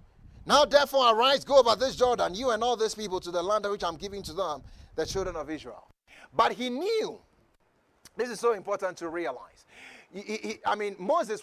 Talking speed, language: 205 wpm, English